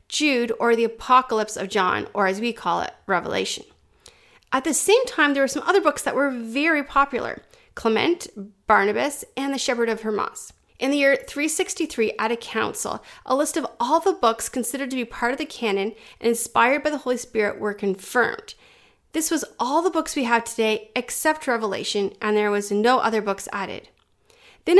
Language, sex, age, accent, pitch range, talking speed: English, female, 30-49, American, 215-310 Hz, 190 wpm